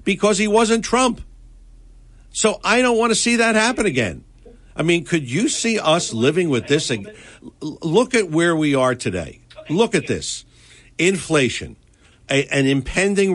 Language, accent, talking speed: English, American, 155 wpm